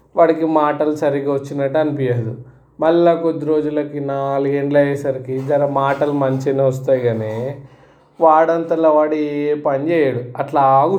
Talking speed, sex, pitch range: 105 wpm, male, 135-160 Hz